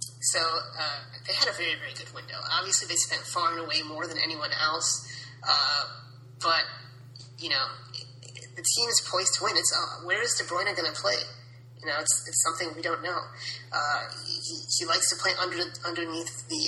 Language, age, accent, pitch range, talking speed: English, 30-49, American, 120-160 Hz, 205 wpm